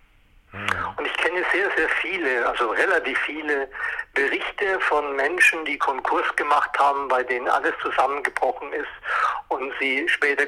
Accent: German